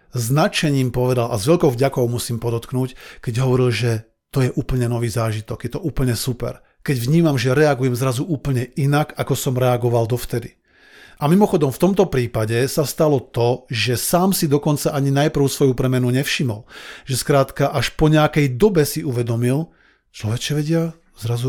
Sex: male